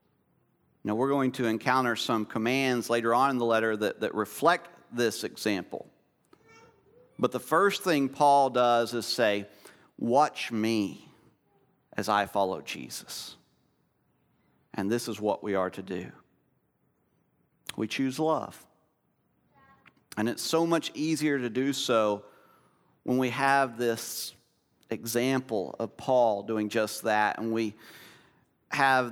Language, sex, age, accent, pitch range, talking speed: English, male, 40-59, American, 110-140 Hz, 130 wpm